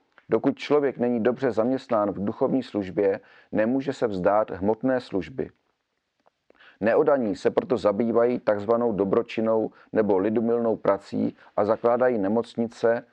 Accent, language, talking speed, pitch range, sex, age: native, Czech, 115 wpm, 110-130 Hz, male, 40-59